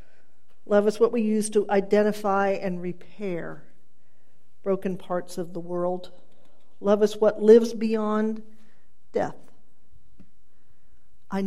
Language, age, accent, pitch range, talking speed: English, 50-69, American, 185-220 Hz, 110 wpm